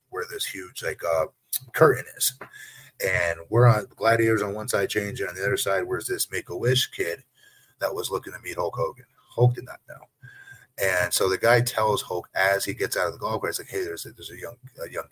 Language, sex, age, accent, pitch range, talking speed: English, male, 30-49, American, 110-150 Hz, 240 wpm